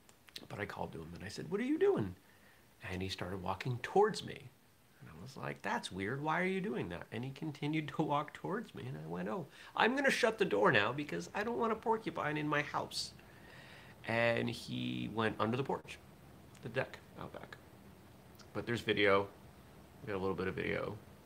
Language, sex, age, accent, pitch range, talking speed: English, male, 30-49, American, 90-145 Hz, 215 wpm